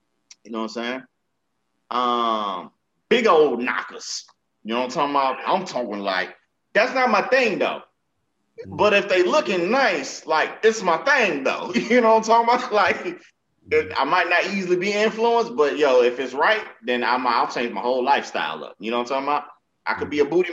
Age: 30-49